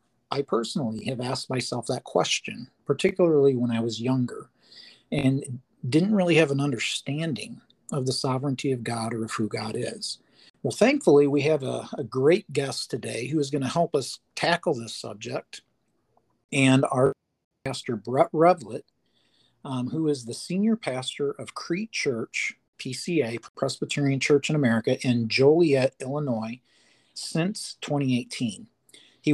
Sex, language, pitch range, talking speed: male, English, 125-155 Hz, 145 wpm